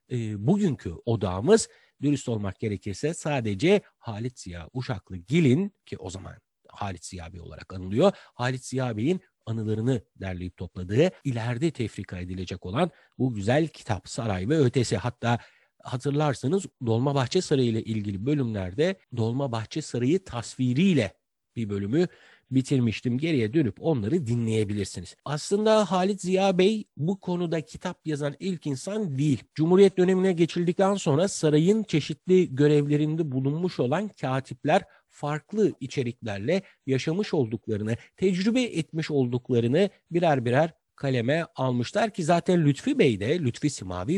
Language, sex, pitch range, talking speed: Turkish, male, 115-170 Hz, 120 wpm